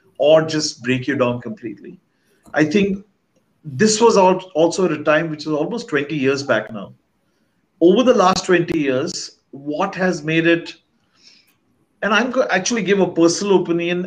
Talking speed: 165 wpm